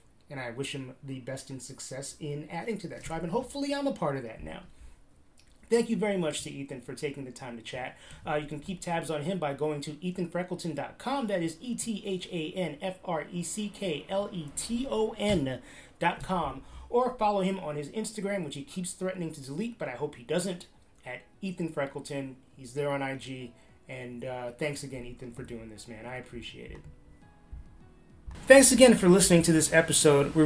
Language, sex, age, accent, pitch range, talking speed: English, male, 30-49, American, 140-180 Hz, 175 wpm